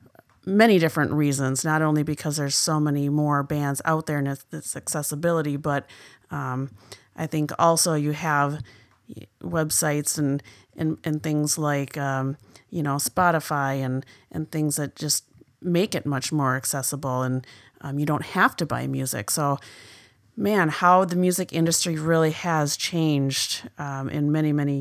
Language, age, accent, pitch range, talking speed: English, 30-49, American, 140-160 Hz, 155 wpm